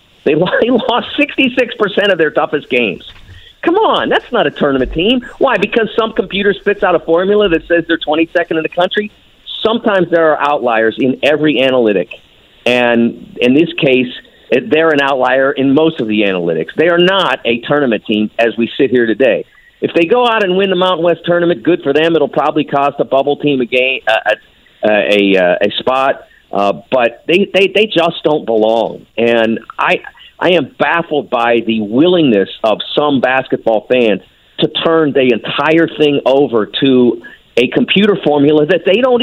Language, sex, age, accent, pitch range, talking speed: English, male, 50-69, American, 125-210 Hz, 175 wpm